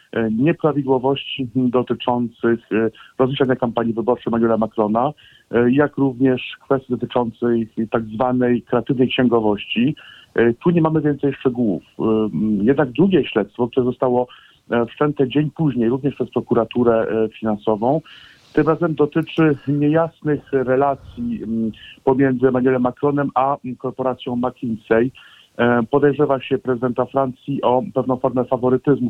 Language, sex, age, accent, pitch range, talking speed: Polish, male, 50-69, native, 120-140 Hz, 105 wpm